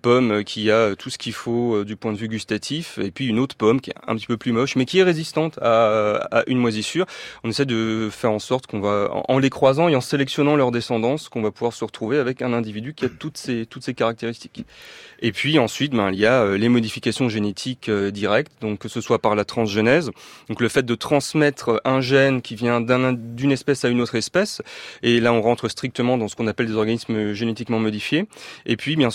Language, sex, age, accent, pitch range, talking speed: French, male, 30-49, French, 110-130 Hz, 230 wpm